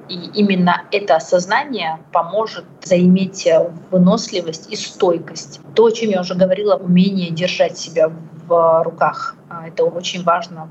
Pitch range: 170-200 Hz